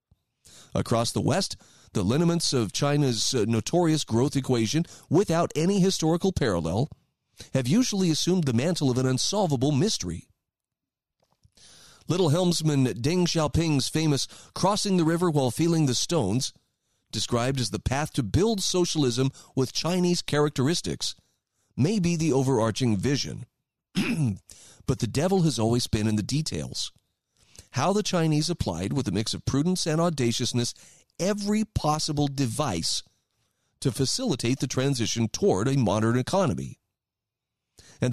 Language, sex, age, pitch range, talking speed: English, male, 40-59, 120-170 Hz, 130 wpm